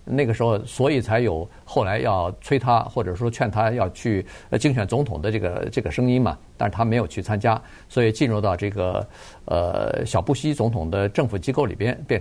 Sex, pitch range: male, 110-150 Hz